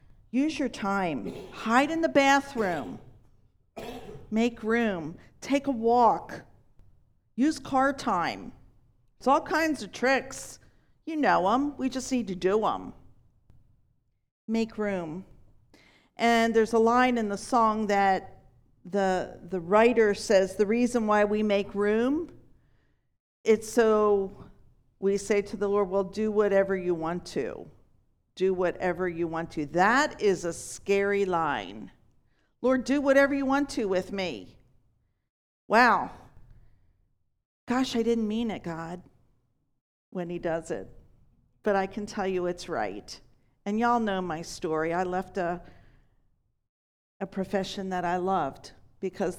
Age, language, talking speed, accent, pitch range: 50-69, English, 135 wpm, American, 160-225 Hz